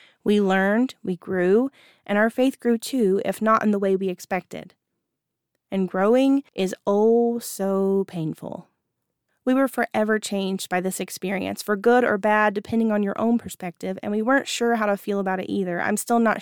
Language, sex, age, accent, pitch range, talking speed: English, female, 20-39, American, 185-235 Hz, 185 wpm